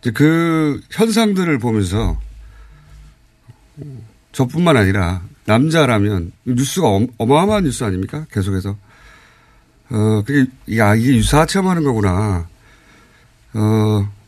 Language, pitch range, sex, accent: Korean, 105-165 Hz, male, native